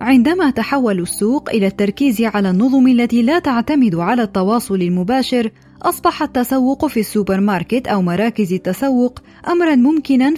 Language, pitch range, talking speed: Arabic, 200-265 Hz, 135 wpm